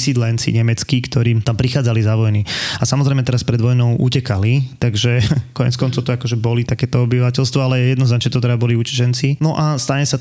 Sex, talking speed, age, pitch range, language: male, 180 wpm, 20-39, 115-125 Hz, Slovak